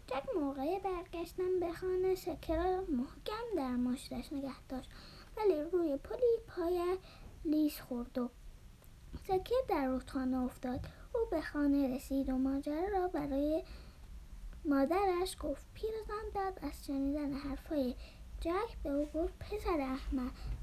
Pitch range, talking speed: 275-370 Hz, 125 wpm